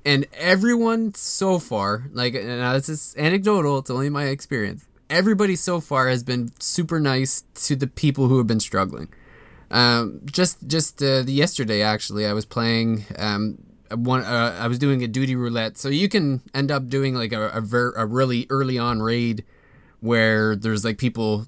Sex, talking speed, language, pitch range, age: male, 180 wpm, English, 110-135 Hz, 20-39